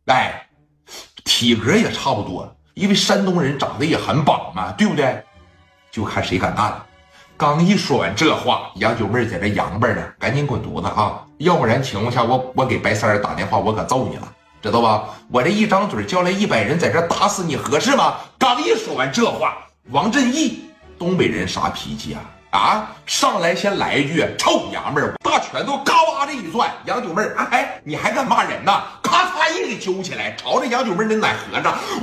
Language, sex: Chinese, male